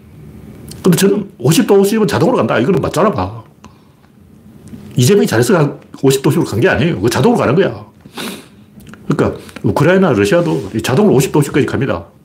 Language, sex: Korean, male